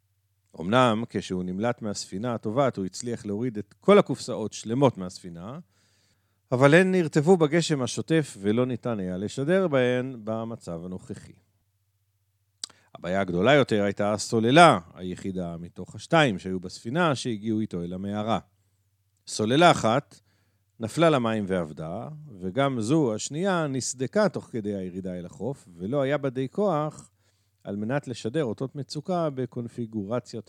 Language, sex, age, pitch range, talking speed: Hebrew, male, 50-69, 100-130 Hz, 125 wpm